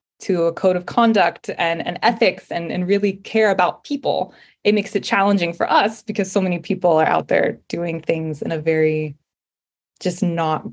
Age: 20-39